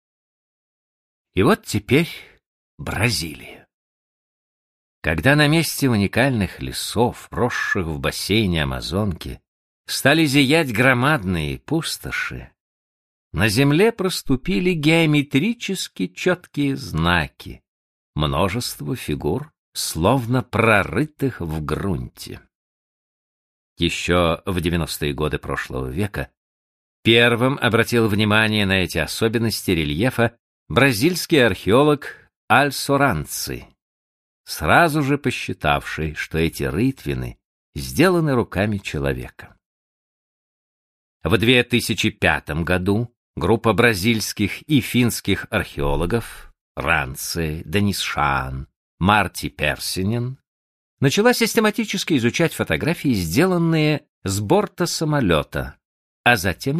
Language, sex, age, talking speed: Russian, male, 50-69, 80 wpm